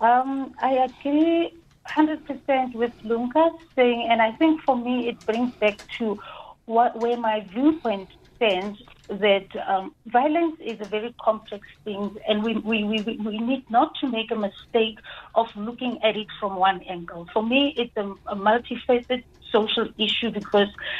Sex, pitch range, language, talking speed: female, 210-250 Hz, English, 160 wpm